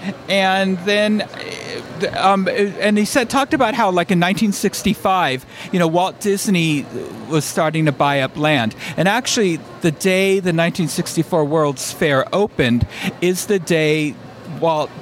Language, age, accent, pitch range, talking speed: English, 50-69, American, 155-210 Hz, 140 wpm